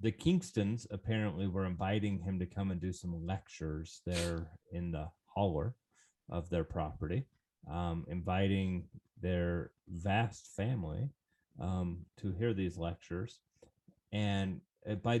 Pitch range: 90-115 Hz